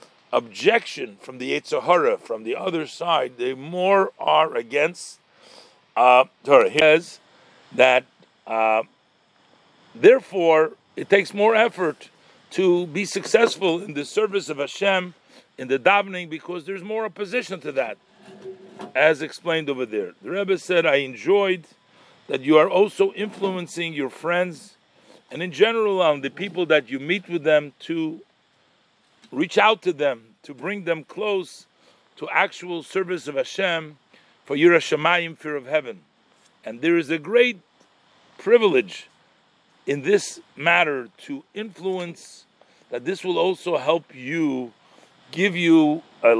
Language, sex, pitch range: English, male, 155-195 Hz